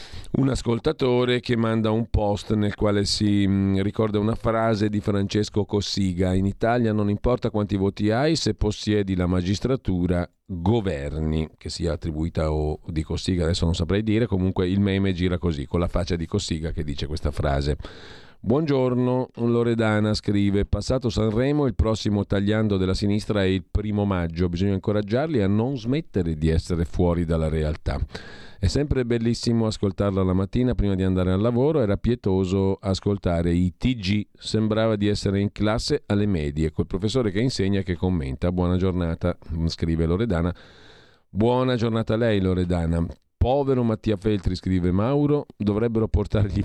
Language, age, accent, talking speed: Italian, 50-69, native, 155 wpm